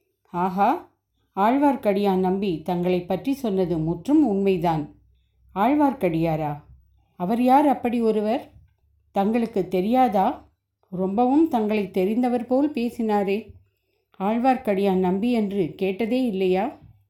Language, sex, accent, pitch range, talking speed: Tamil, female, native, 170-225 Hz, 90 wpm